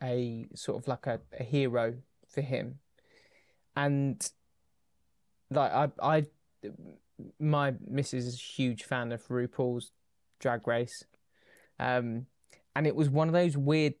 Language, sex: English, male